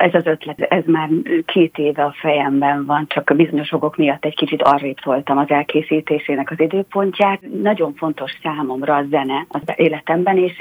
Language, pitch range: Hungarian, 145-170 Hz